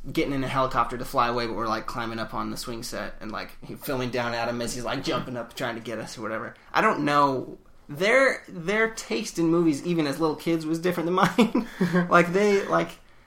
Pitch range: 130-185 Hz